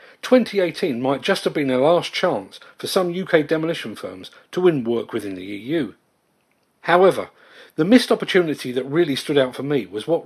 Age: 40-59